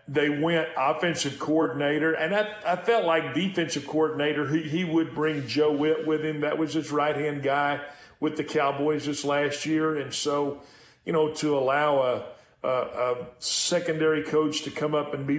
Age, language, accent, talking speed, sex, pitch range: 40-59, English, American, 180 wpm, male, 145-170 Hz